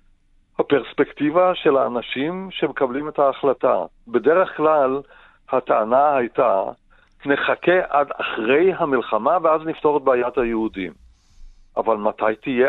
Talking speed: 105 wpm